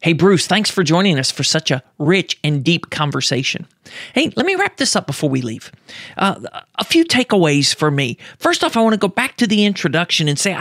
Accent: American